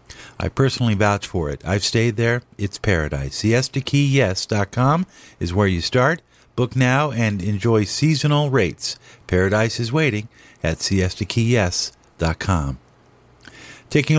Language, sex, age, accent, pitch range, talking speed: English, male, 50-69, American, 100-130 Hz, 115 wpm